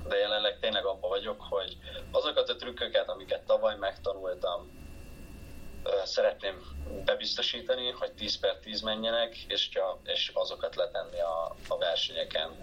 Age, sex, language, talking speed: 20-39, male, Hungarian, 115 wpm